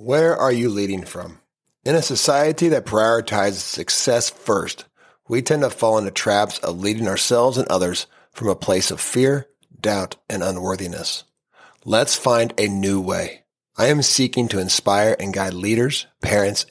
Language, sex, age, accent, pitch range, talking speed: English, male, 40-59, American, 105-160 Hz, 160 wpm